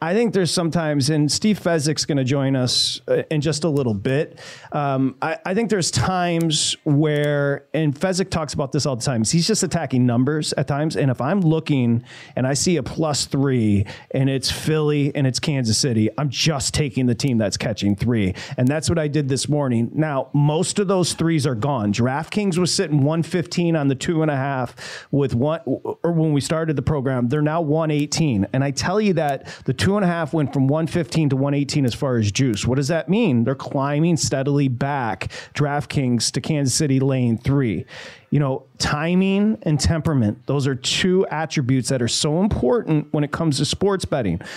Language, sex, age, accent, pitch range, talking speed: English, male, 40-59, American, 135-165 Hz, 200 wpm